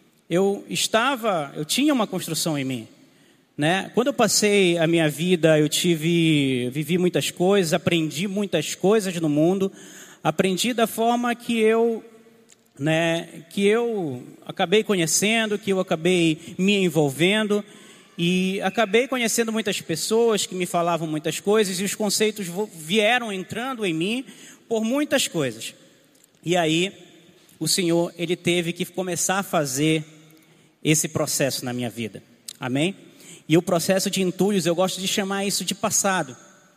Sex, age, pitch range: male, 20-39, 160-215 Hz